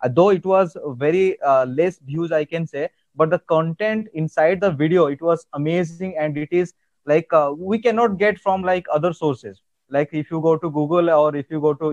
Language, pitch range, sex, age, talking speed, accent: English, 140-170 Hz, male, 20-39, 210 wpm, Indian